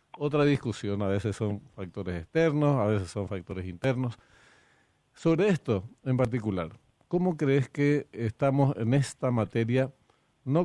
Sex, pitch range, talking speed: male, 105-130 Hz, 135 wpm